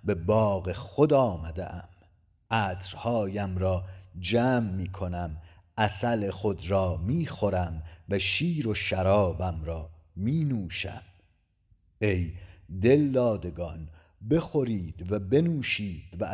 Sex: male